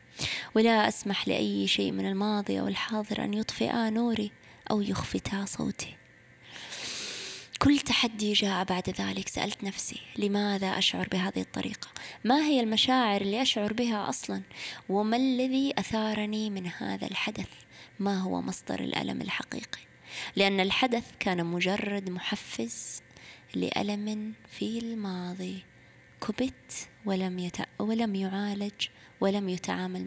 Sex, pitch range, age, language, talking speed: female, 180-210 Hz, 20-39, Arabic, 110 wpm